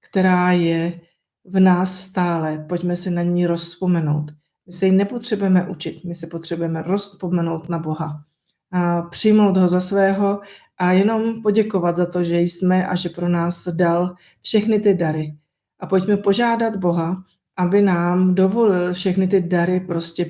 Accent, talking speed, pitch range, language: native, 155 wpm, 170-190 Hz, Czech